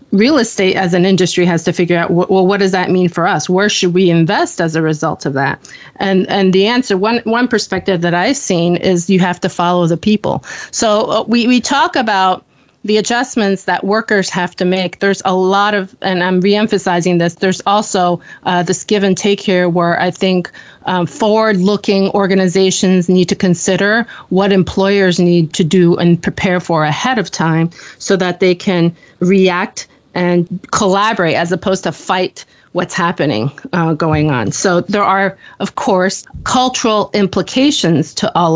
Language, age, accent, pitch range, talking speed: English, 30-49, American, 180-205 Hz, 180 wpm